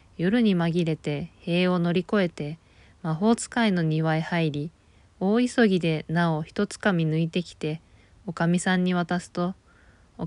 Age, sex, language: 20-39, female, Japanese